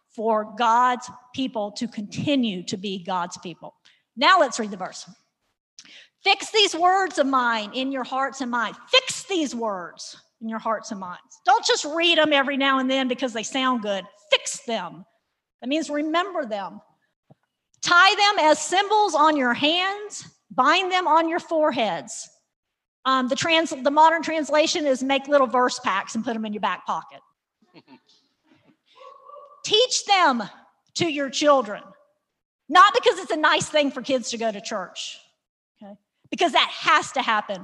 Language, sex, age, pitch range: English, female, 50-69, 225-330 Hz